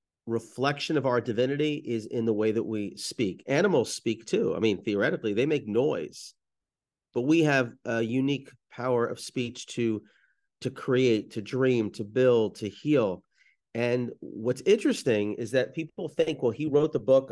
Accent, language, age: American, English, 40-59